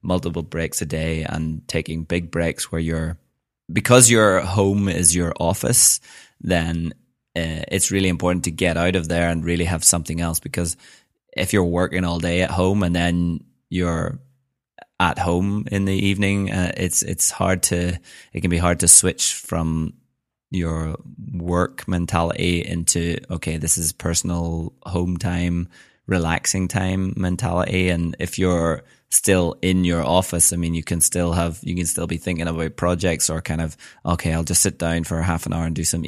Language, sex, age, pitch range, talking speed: English, male, 20-39, 80-90 Hz, 180 wpm